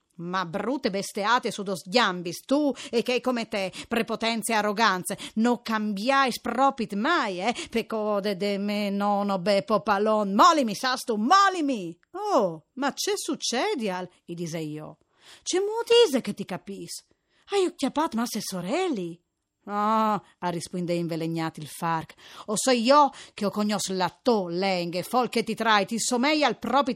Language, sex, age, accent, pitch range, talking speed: Italian, female, 40-59, native, 190-275 Hz, 155 wpm